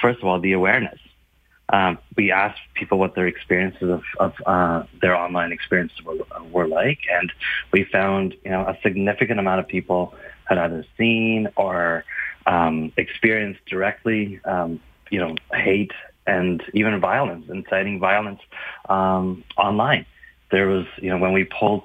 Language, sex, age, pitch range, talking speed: English, male, 30-49, 90-105 Hz, 155 wpm